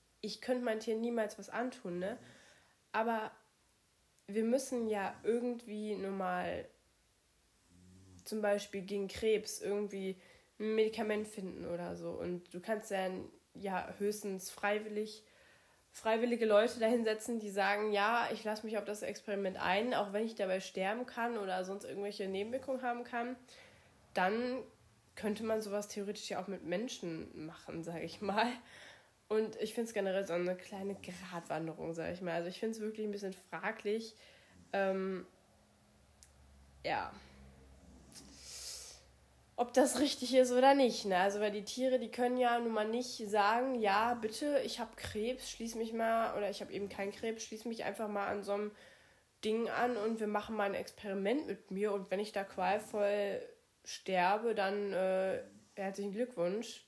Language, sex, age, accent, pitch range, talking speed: German, female, 20-39, German, 190-225 Hz, 160 wpm